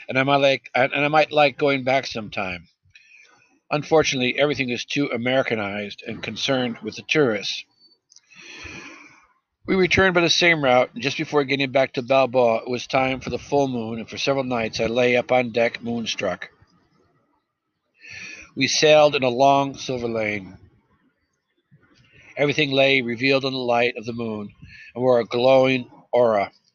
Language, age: English, 60-79